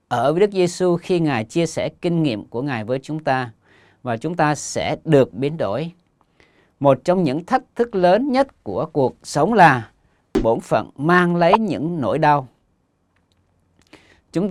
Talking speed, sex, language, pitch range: 170 wpm, male, Vietnamese, 130-175 Hz